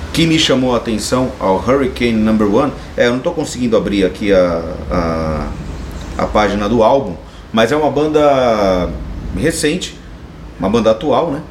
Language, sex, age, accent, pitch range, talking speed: Portuguese, male, 30-49, Brazilian, 85-135 Hz, 160 wpm